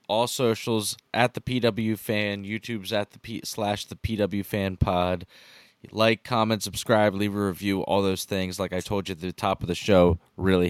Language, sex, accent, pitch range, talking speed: English, male, American, 95-120 Hz, 210 wpm